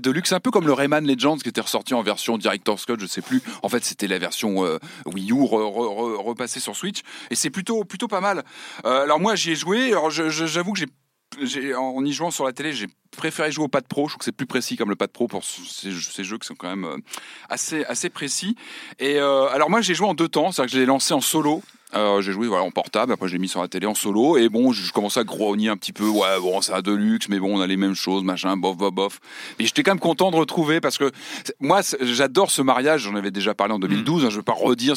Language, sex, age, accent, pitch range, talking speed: French, male, 30-49, French, 110-170 Hz, 285 wpm